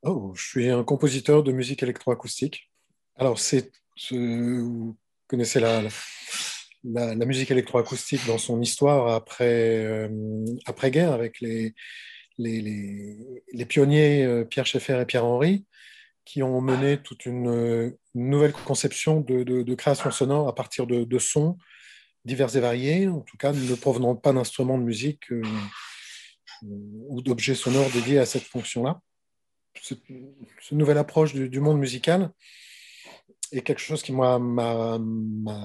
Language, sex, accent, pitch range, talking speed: French, male, French, 120-145 Hz, 150 wpm